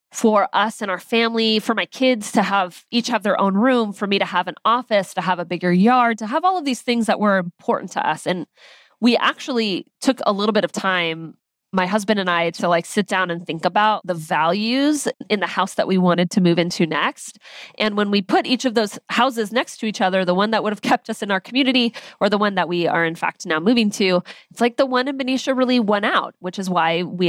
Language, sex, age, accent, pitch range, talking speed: English, female, 20-39, American, 190-245 Hz, 255 wpm